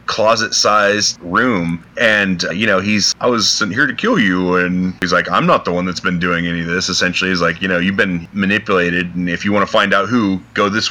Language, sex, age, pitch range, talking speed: English, male, 30-49, 90-110 Hz, 250 wpm